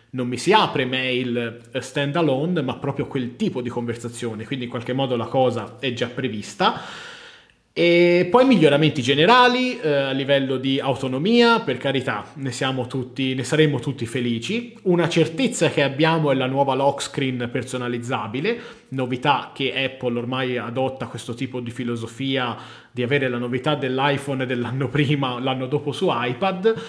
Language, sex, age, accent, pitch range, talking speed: Italian, male, 30-49, native, 125-150 Hz, 155 wpm